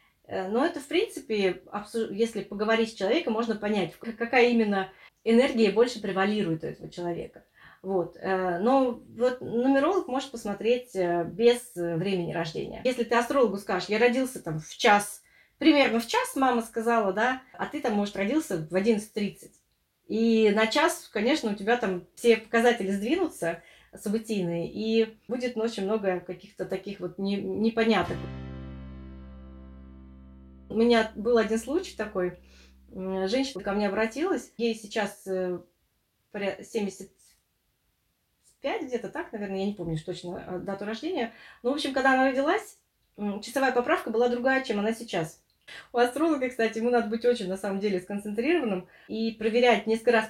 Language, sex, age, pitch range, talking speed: Russian, female, 30-49, 190-240 Hz, 140 wpm